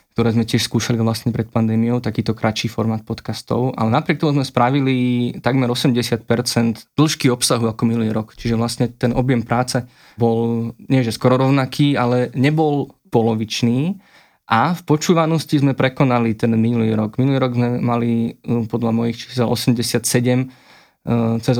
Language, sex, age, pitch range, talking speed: Slovak, male, 20-39, 115-130 Hz, 145 wpm